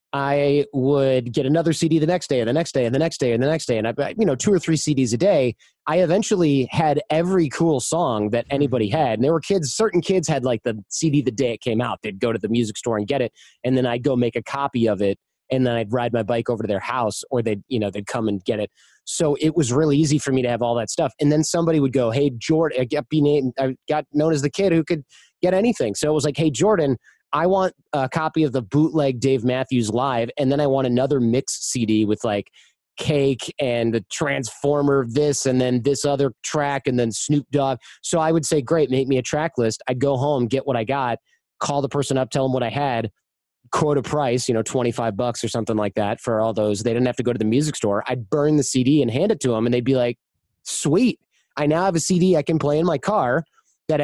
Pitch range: 120-150 Hz